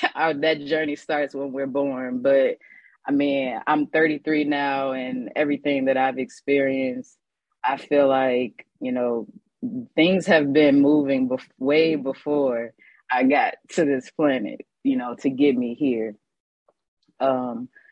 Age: 20-39